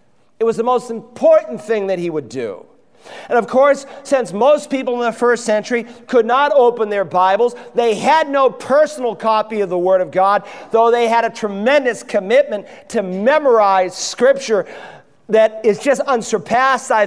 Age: 40-59